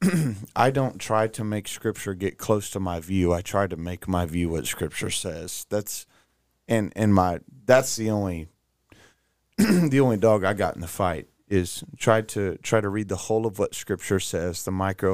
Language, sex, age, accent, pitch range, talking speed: English, male, 30-49, American, 90-110 Hz, 195 wpm